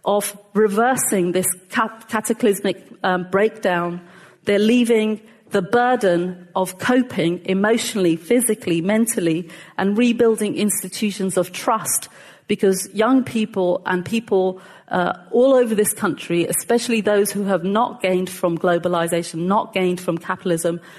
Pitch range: 180-220 Hz